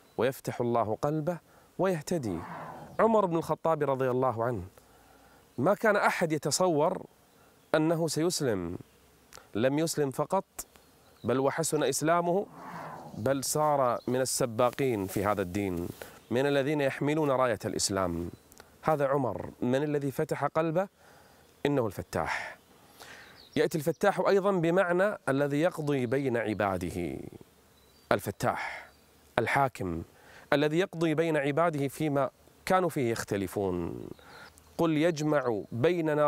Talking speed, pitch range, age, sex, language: 105 wpm, 130-165 Hz, 30-49, male, Arabic